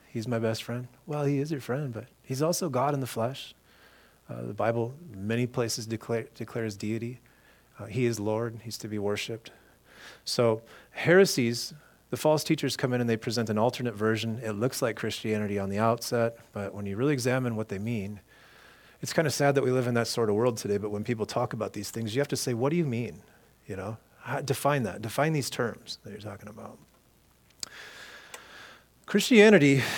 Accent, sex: American, male